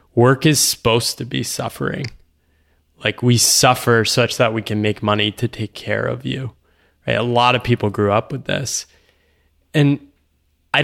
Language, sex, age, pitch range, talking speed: English, male, 20-39, 105-130 Hz, 165 wpm